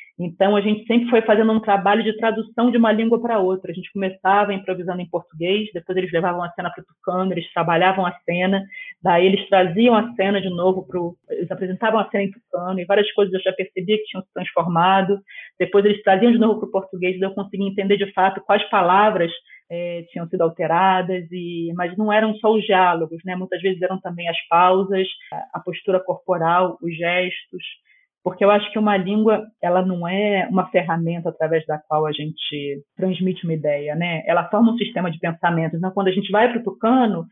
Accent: Brazilian